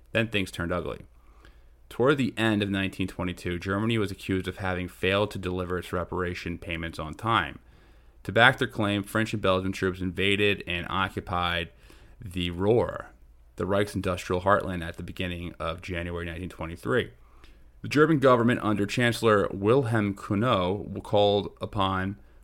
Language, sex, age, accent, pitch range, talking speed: English, male, 30-49, American, 90-105 Hz, 145 wpm